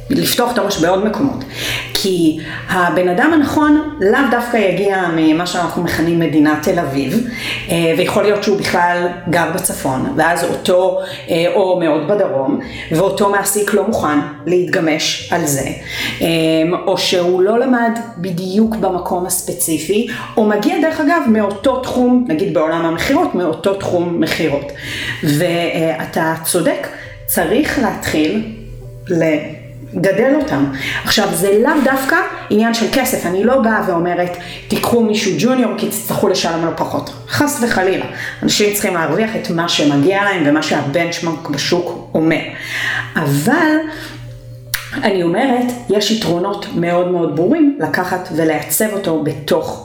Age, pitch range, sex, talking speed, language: 40-59, 160-220 Hz, female, 130 wpm, Hebrew